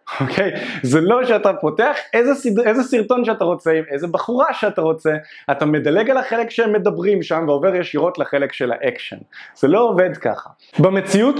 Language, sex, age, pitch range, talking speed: Hebrew, male, 20-39, 150-220 Hz, 175 wpm